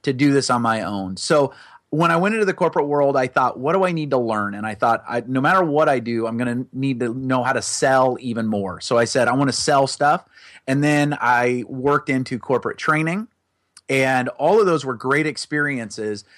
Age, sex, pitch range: 30-49, male, 125-155 Hz